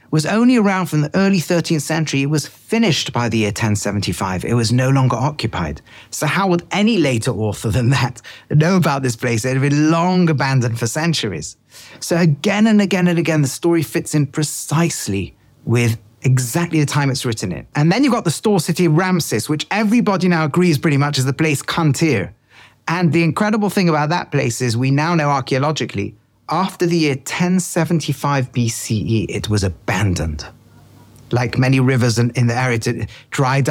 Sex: male